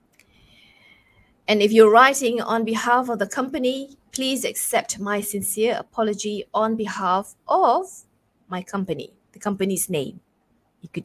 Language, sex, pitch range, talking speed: English, female, 195-250 Hz, 130 wpm